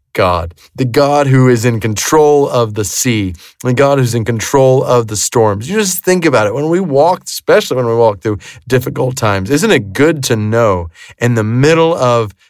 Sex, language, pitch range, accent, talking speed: male, English, 100-140 Hz, American, 200 wpm